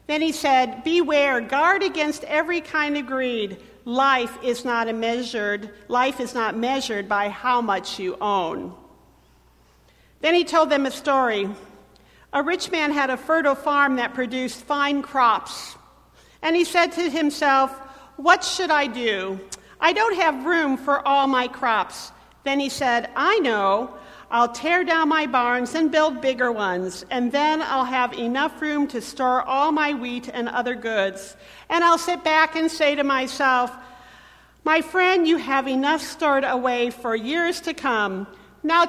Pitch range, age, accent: 220-300 Hz, 50-69, American